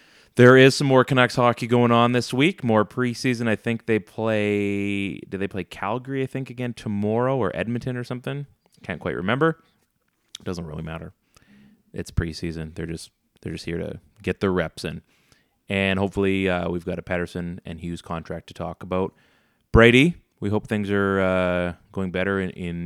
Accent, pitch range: American, 90-120 Hz